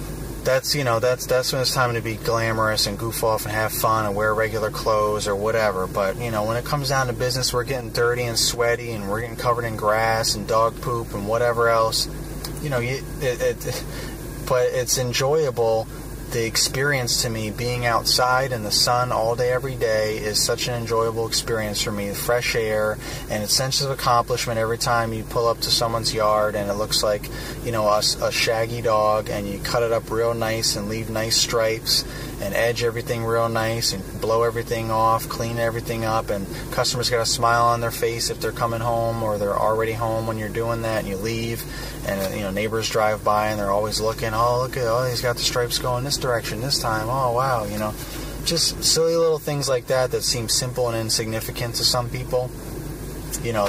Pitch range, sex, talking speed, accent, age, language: 110-125 Hz, male, 215 wpm, American, 30-49, English